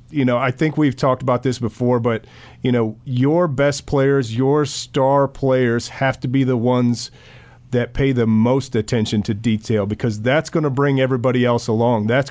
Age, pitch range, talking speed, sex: 30-49, 120-140 Hz, 185 wpm, male